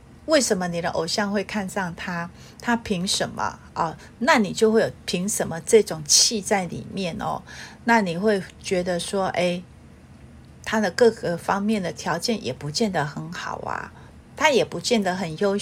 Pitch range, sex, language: 175-220 Hz, female, Chinese